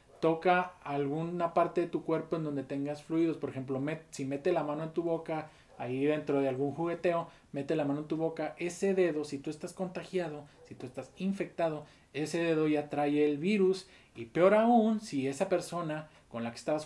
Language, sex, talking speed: Spanish, male, 200 wpm